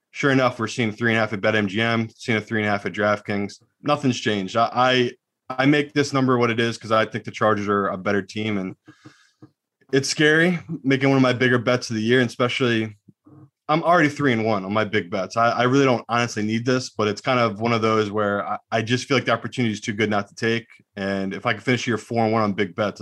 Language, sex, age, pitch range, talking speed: English, male, 20-39, 105-125 Hz, 265 wpm